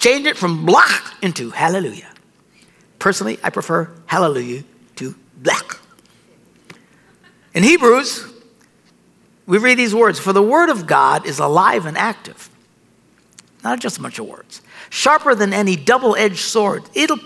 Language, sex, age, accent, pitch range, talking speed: English, male, 60-79, American, 185-230 Hz, 135 wpm